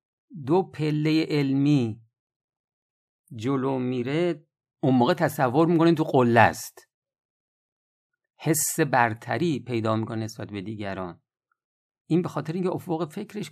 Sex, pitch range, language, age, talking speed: male, 115-155 Hz, Persian, 50-69, 110 wpm